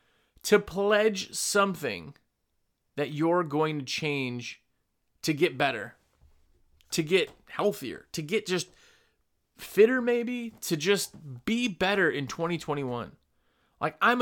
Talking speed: 115 wpm